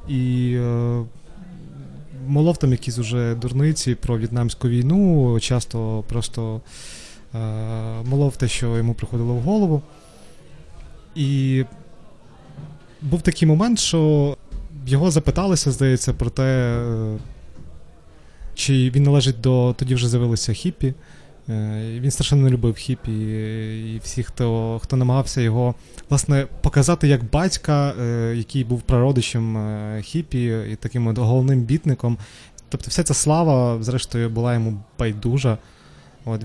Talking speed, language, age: 115 wpm, Ukrainian, 20-39